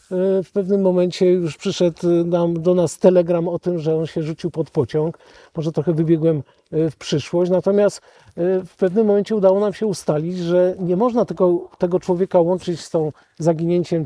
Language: Polish